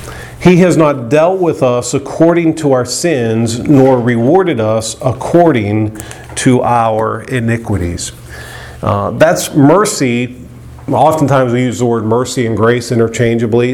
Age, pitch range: 40-59, 105-125 Hz